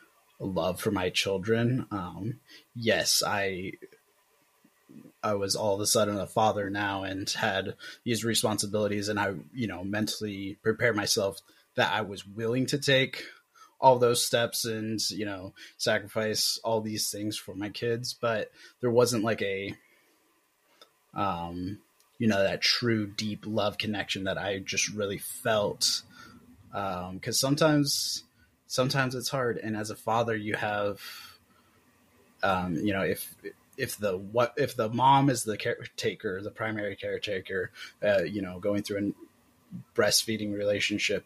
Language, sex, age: English, male, 20-39